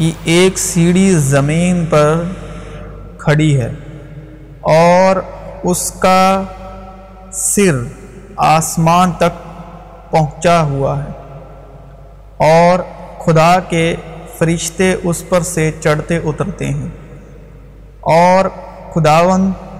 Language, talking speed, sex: Urdu, 85 wpm, male